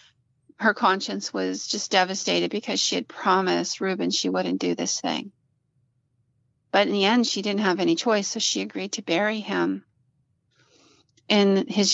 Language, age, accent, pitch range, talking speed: English, 40-59, American, 160-210 Hz, 160 wpm